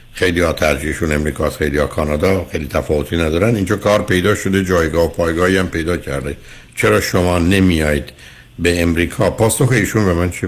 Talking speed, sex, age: 170 wpm, male, 60-79